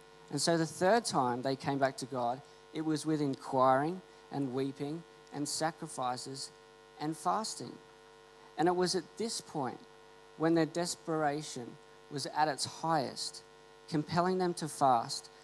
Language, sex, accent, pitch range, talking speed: English, male, Australian, 140-170 Hz, 145 wpm